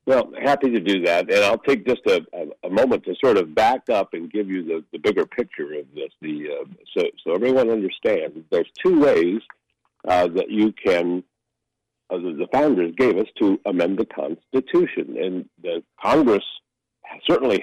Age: 60-79